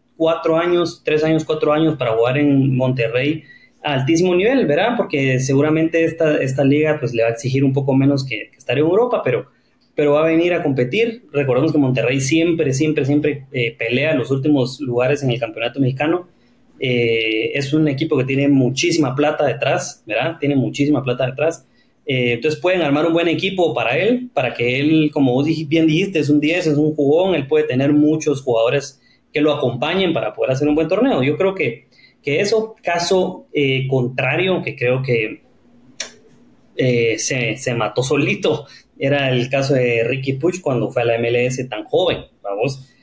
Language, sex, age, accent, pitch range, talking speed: English, male, 30-49, Mexican, 130-155 Hz, 190 wpm